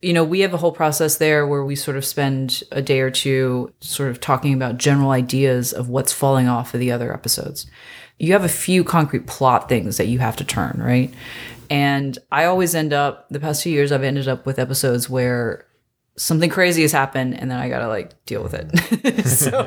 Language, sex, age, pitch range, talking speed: English, female, 20-39, 130-170 Hz, 225 wpm